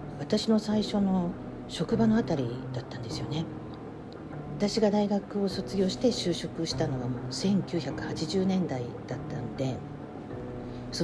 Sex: female